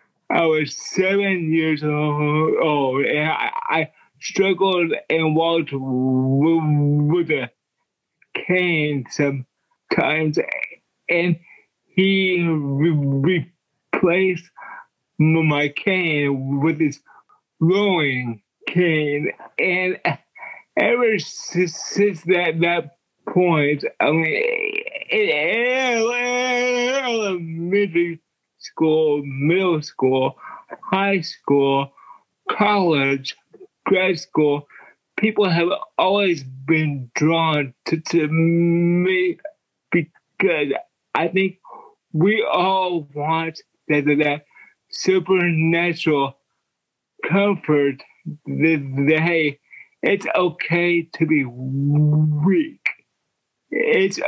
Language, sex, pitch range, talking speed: English, male, 150-190 Hz, 80 wpm